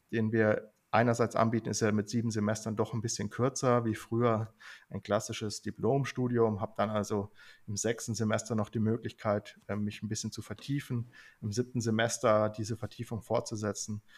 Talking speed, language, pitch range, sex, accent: 160 wpm, German, 105-120 Hz, male, German